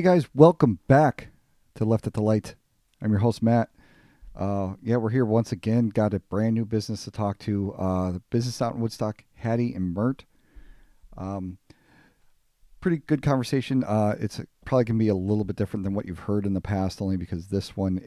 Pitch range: 95-115 Hz